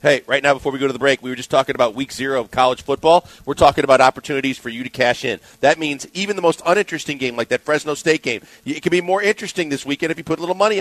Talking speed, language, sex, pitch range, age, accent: 295 wpm, English, male, 135-175 Hz, 40-59, American